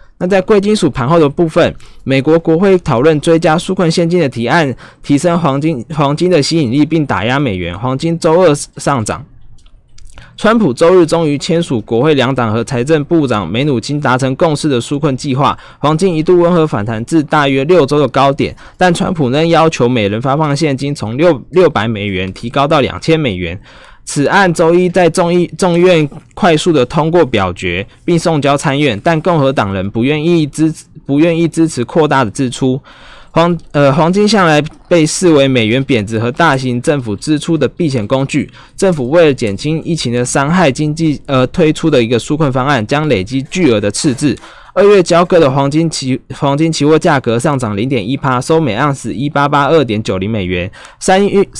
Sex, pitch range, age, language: male, 130-165 Hz, 20-39, Chinese